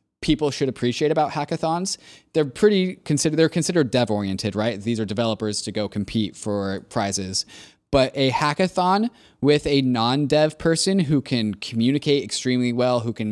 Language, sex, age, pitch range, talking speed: English, male, 20-39, 105-140 Hz, 160 wpm